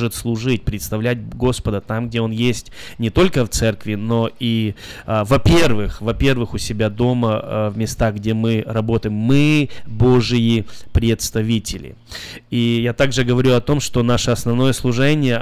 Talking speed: 140 wpm